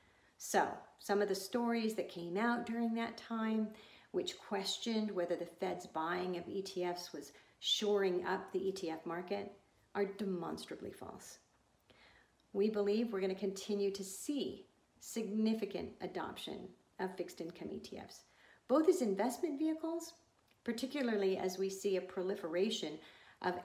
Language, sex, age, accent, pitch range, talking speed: English, female, 50-69, American, 180-215 Hz, 130 wpm